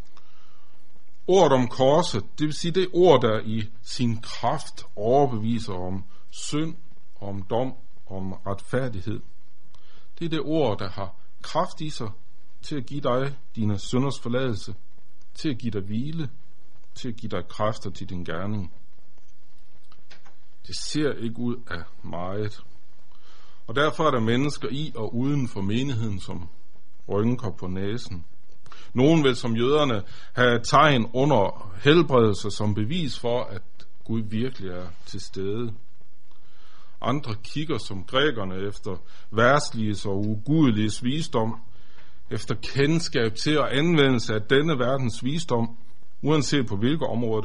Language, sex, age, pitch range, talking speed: Danish, male, 60-79, 100-135 Hz, 135 wpm